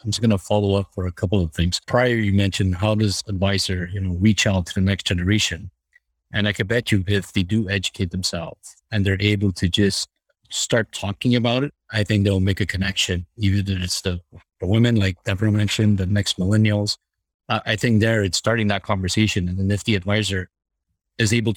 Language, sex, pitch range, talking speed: English, male, 100-115 Hz, 215 wpm